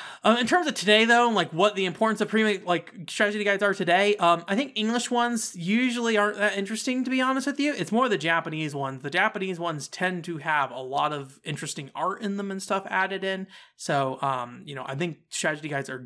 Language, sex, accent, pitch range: English, male, American, 145-215 Hz